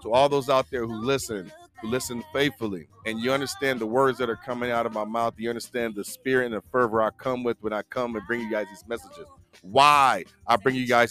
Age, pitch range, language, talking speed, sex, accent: 40-59, 115-145 Hz, English, 250 wpm, male, American